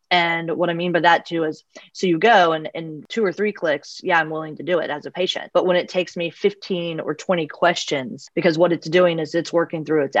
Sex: female